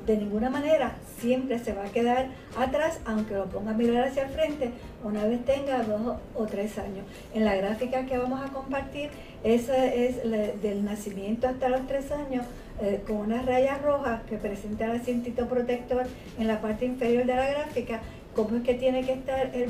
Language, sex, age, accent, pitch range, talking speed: Spanish, female, 50-69, American, 215-260 Hz, 195 wpm